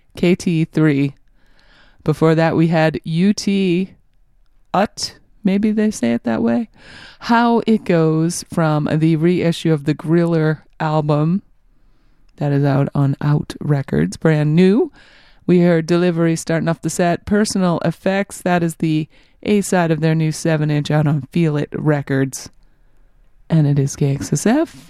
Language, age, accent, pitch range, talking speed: English, 30-49, American, 155-185 Hz, 145 wpm